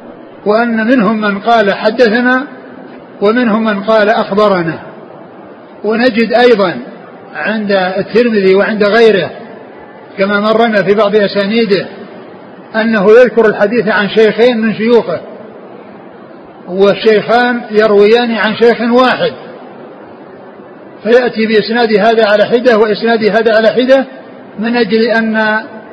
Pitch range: 210-235 Hz